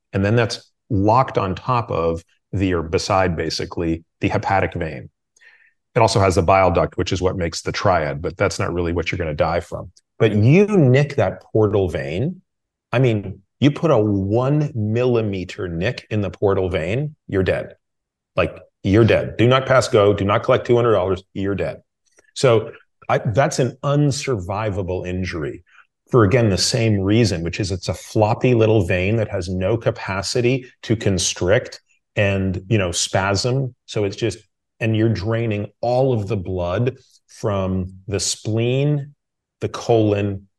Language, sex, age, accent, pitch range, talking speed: English, male, 30-49, American, 95-120 Hz, 165 wpm